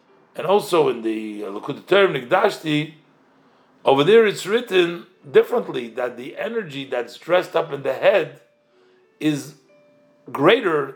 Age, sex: 50-69, male